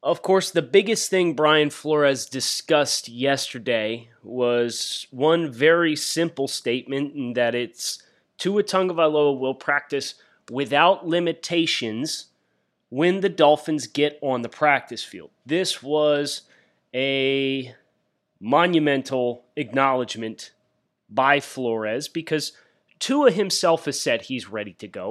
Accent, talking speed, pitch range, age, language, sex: American, 110 wpm, 130-175 Hz, 30-49, English, male